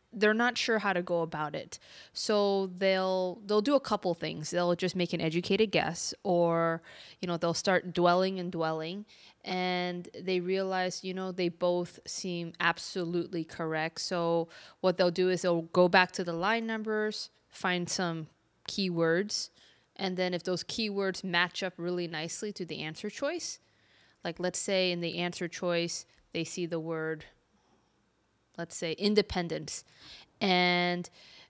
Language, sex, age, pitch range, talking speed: English, female, 20-39, 170-200 Hz, 155 wpm